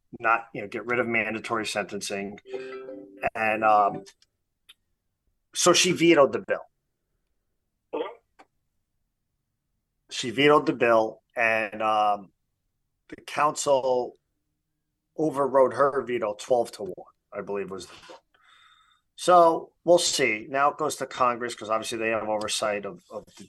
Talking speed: 125 wpm